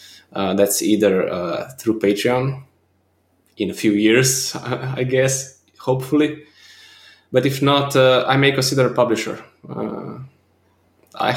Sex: male